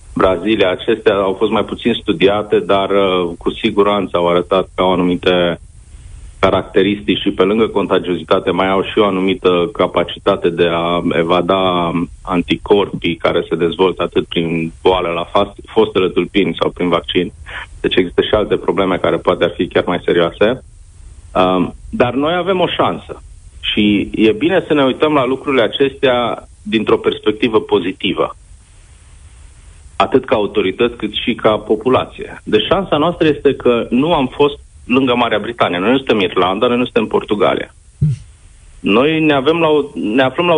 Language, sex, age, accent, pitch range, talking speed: Romanian, male, 30-49, native, 85-130 Hz, 160 wpm